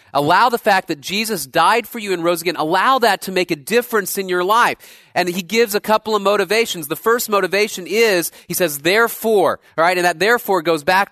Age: 30-49